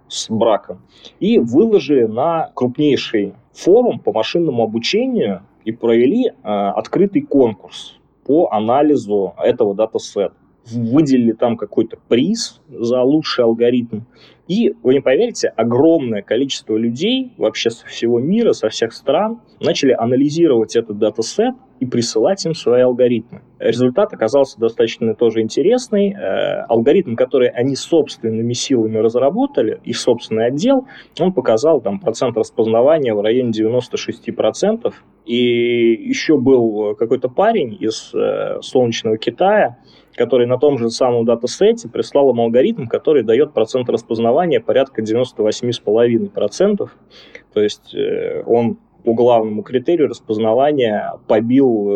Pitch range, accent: 115-165 Hz, native